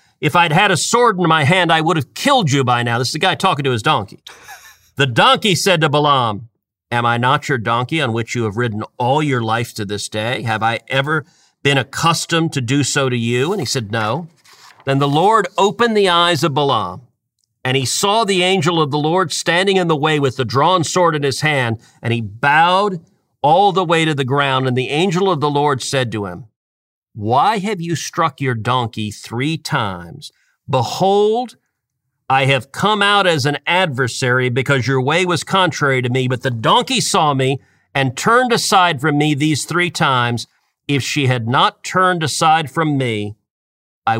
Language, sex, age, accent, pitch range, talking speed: English, male, 50-69, American, 125-170 Hz, 200 wpm